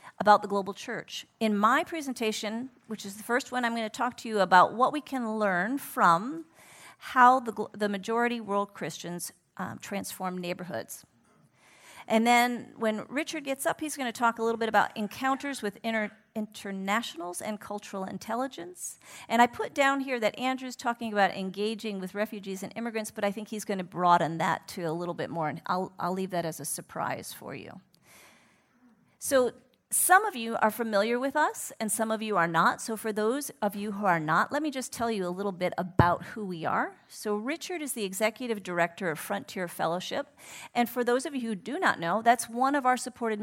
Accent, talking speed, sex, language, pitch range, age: American, 205 wpm, female, English, 195-250 Hz, 40-59